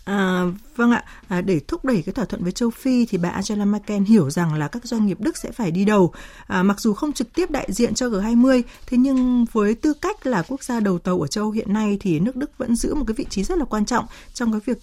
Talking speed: 275 wpm